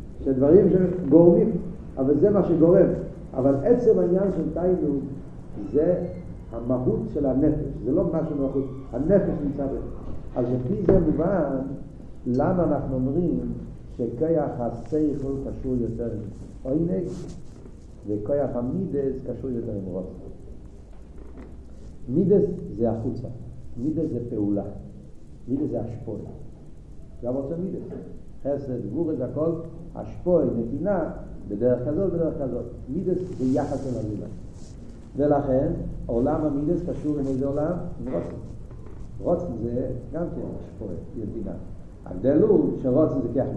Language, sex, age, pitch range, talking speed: Hebrew, male, 50-69, 120-160 Hz, 120 wpm